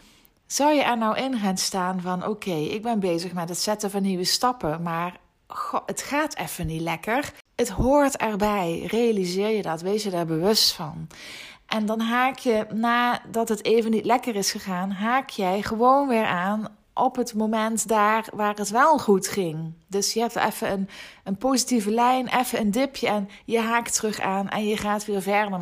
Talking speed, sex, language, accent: 190 wpm, female, Dutch, Dutch